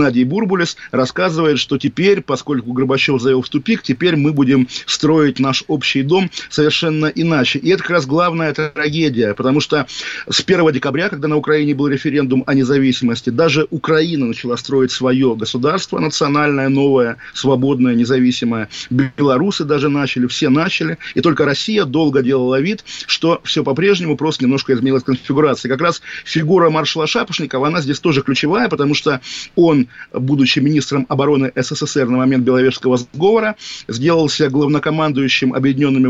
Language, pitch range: Russian, 135-165 Hz